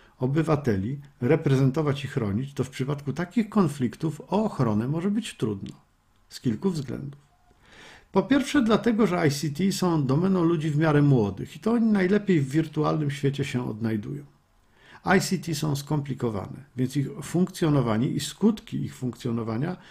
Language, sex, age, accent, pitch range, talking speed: Polish, male, 50-69, native, 130-170 Hz, 140 wpm